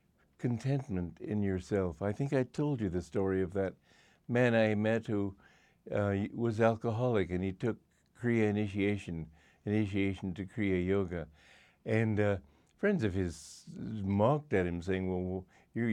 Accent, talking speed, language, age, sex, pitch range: American, 145 wpm, English, 60-79, male, 95-120 Hz